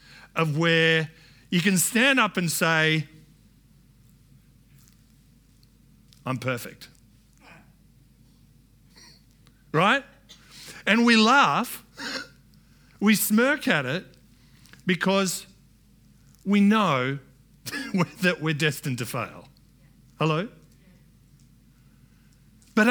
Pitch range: 175-235 Hz